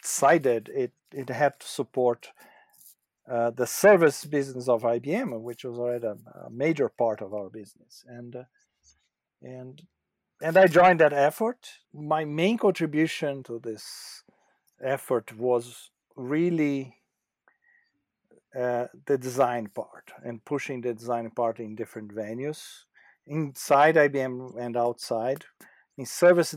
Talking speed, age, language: 125 wpm, 50-69, English